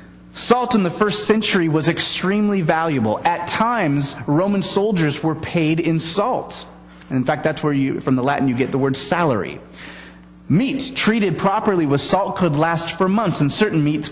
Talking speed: 180 wpm